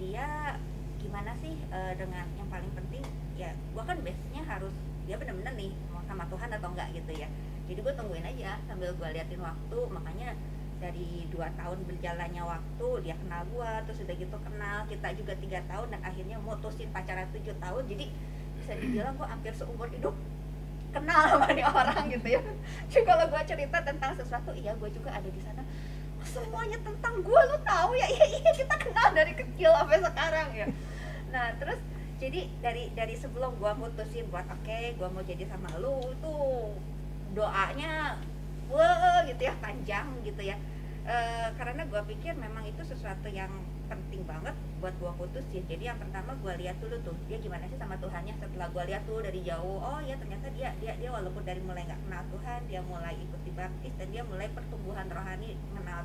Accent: native